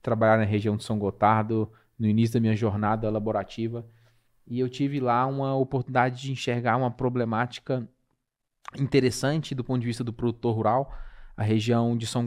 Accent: Brazilian